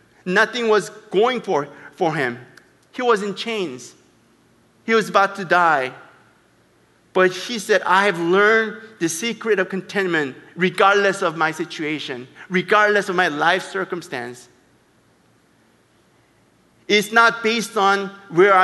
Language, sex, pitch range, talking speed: Russian, male, 175-230 Hz, 125 wpm